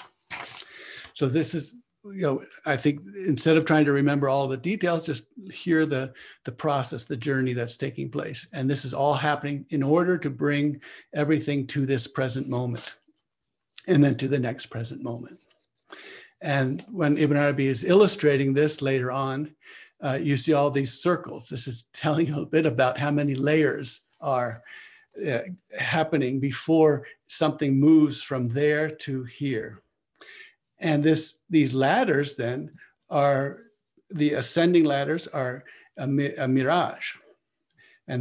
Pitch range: 135-160 Hz